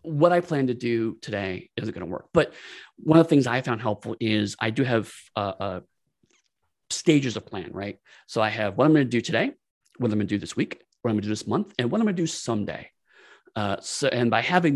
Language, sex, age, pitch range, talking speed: English, male, 30-49, 110-150 Hz, 255 wpm